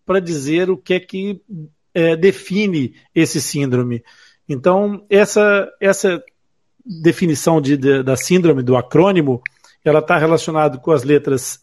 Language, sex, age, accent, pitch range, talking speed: Portuguese, male, 50-69, Brazilian, 150-195 Hz, 135 wpm